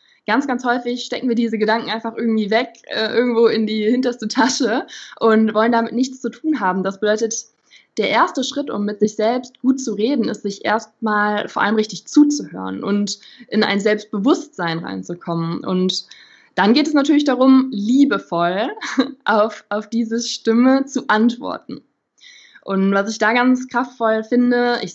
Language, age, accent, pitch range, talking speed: German, 20-39, German, 200-245 Hz, 165 wpm